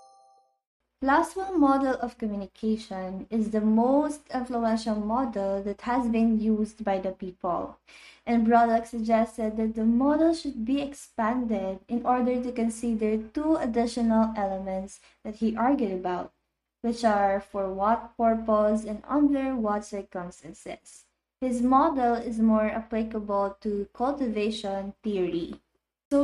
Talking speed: 125 wpm